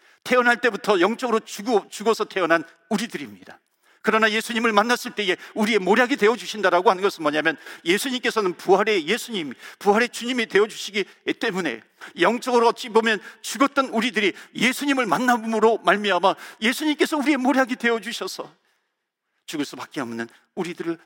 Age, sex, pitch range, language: 50-69, male, 170-245 Hz, Korean